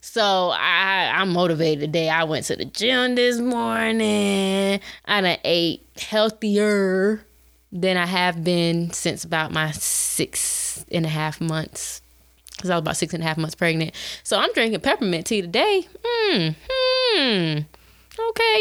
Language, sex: English, female